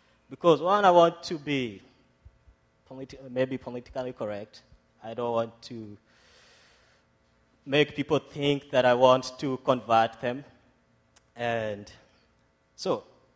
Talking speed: 110 wpm